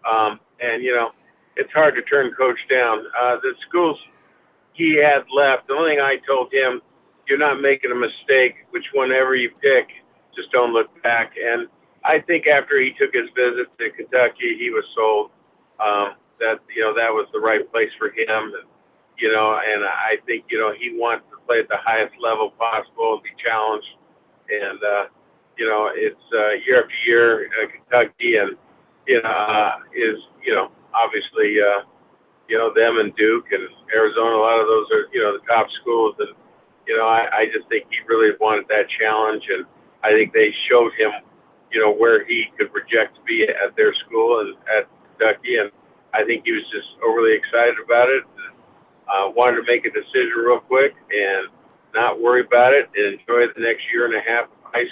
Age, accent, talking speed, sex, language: 50-69, American, 195 wpm, male, English